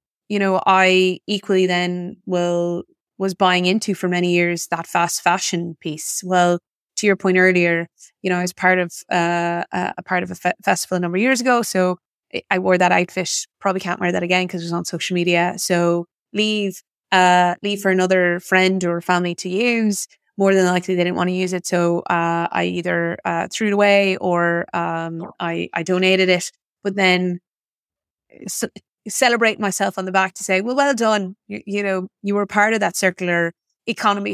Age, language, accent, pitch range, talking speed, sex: 20-39, English, Irish, 175-200 Hz, 195 wpm, female